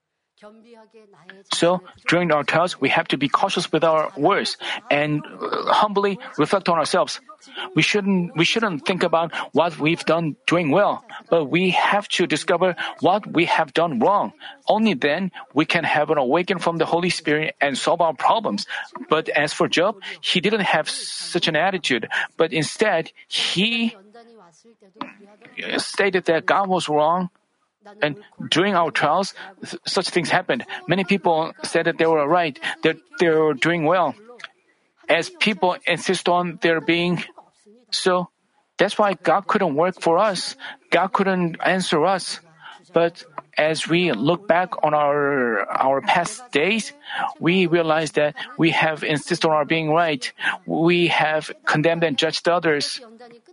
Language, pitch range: Korean, 160-200 Hz